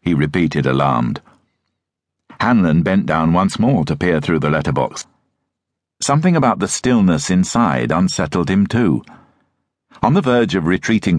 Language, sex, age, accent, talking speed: English, male, 50-69, British, 140 wpm